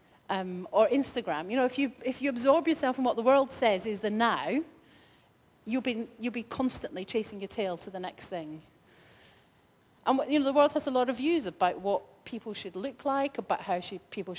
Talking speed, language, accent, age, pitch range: 210 wpm, English, British, 40-59, 190-255 Hz